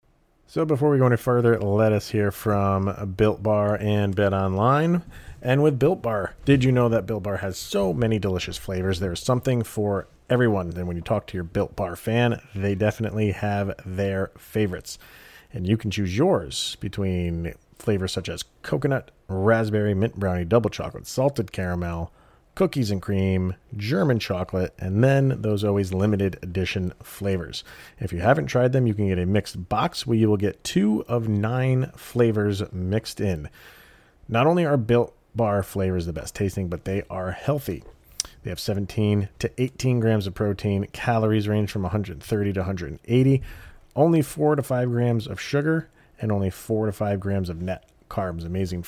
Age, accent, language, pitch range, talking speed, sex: 40-59, American, English, 95-120 Hz, 175 wpm, male